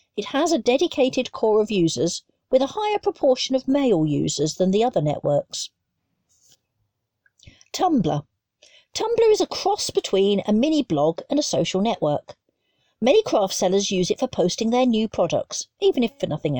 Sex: female